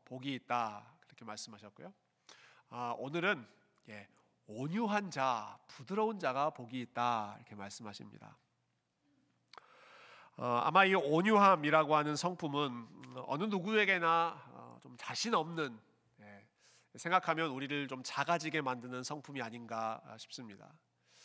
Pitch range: 125-165 Hz